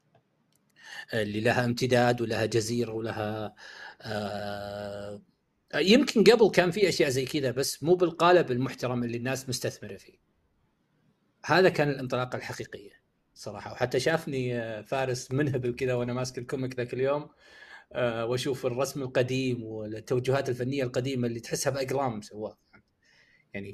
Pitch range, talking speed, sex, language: 120-135 Hz, 120 wpm, male, Arabic